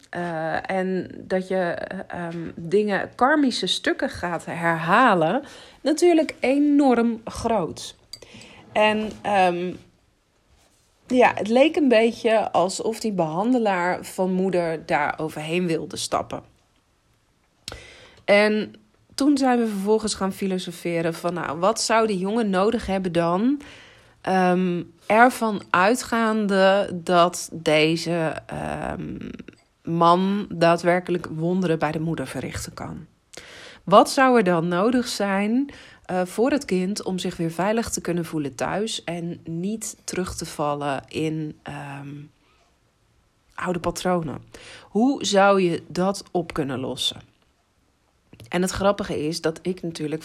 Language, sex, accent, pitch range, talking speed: Dutch, female, Dutch, 160-215 Hz, 120 wpm